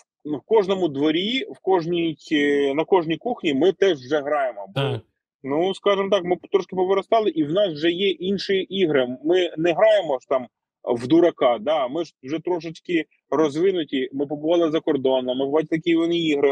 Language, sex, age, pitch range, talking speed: Ukrainian, male, 20-39, 130-175 Hz, 170 wpm